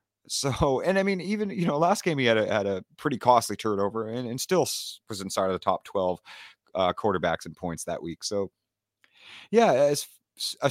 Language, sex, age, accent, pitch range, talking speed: English, male, 30-49, American, 90-120 Hz, 200 wpm